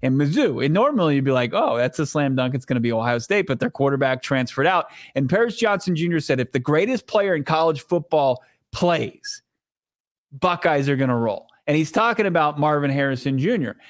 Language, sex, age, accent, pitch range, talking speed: English, male, 30-49, American, 125-160 Hz, 205 wpm